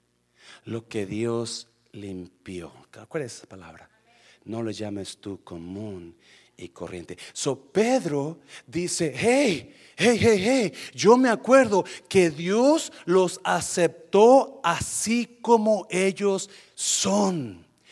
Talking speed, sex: 110 wpm, male